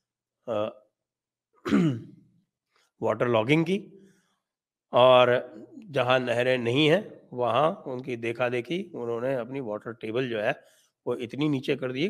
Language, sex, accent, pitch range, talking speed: English, male, Indian, 125-175 Hz, 115 wpm